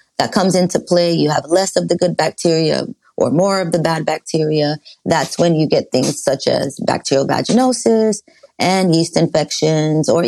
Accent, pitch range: American, 150-195 Hz